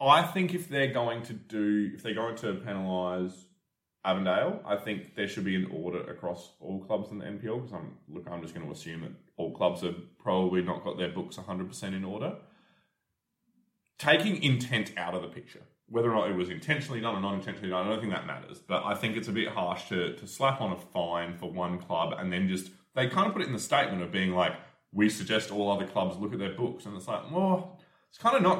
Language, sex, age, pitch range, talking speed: English, male, 20-39, 95-135 Hz, 240 wpm